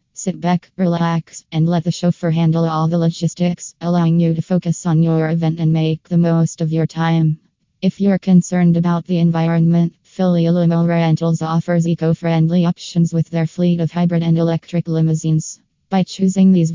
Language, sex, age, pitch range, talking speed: English, female, 20-39, 165-175 Hz, 170 wpm